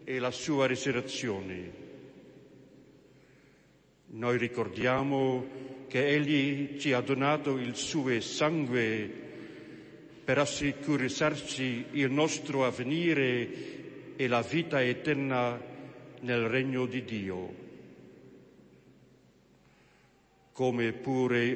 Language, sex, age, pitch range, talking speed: Slovak, male, 60-79, 120-145 Hz, 80 wpm